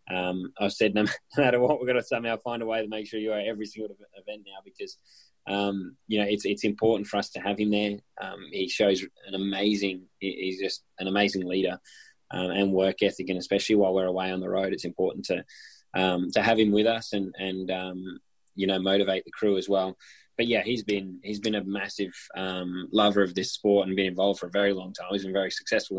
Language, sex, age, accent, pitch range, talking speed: English, male, 20-39, Australian, 95-105 Hz, 235 wpm